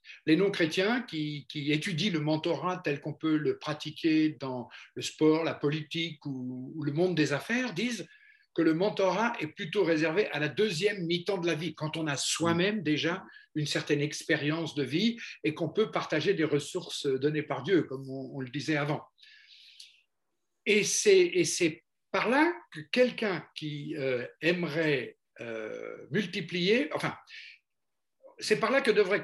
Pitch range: 150-200 Hz